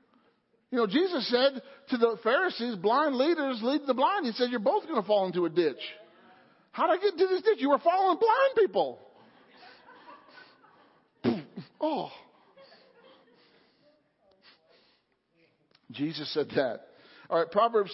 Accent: American